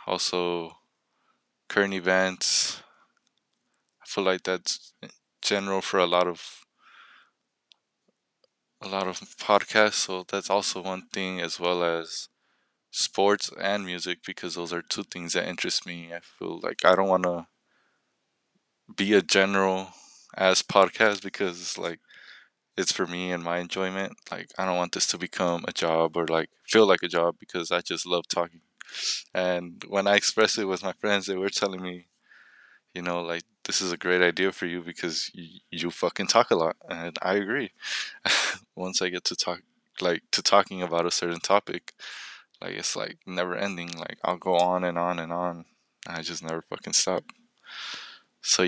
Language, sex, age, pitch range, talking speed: English, male, 20-39, 85-95 Hz, 170 wpm